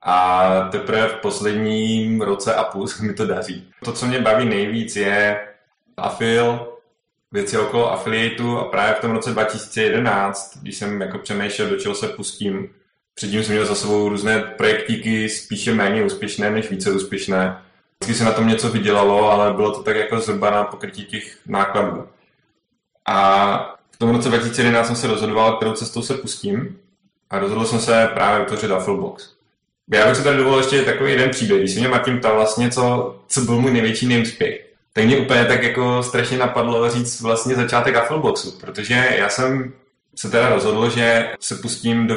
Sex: male